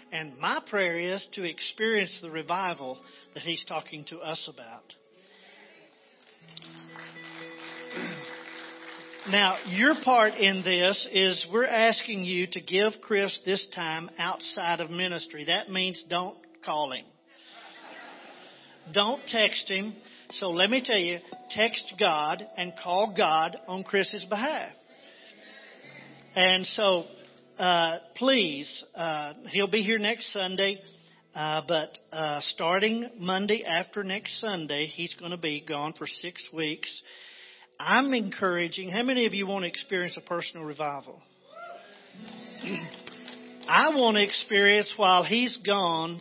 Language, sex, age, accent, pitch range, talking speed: English, male, 50-69, American, 165-205 Hz, 125 wpm